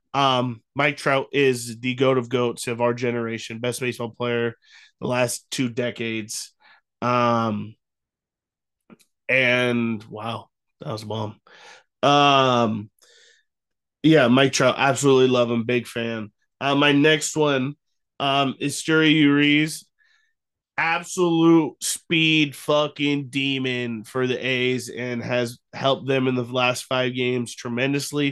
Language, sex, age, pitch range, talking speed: English, male, 20-39, 120-140 Hz, 125 wpm